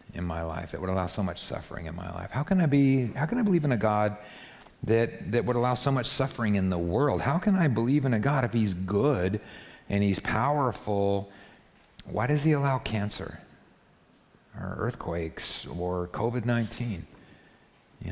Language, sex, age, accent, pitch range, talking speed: English, male, 50-69, American, 90-125 Hz, 185 wpm